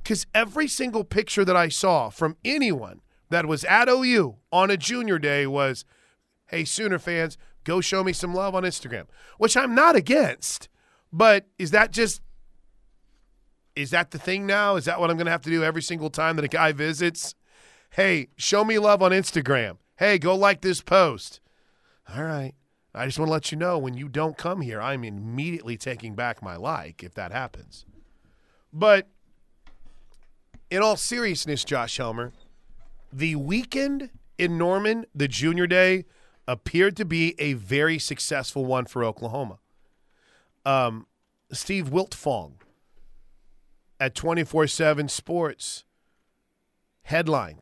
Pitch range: 135-185 Hz